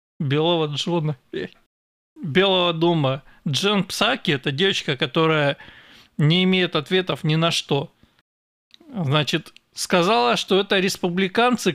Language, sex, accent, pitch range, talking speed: Russian, male, native, 140-175 Hz, 100 wpm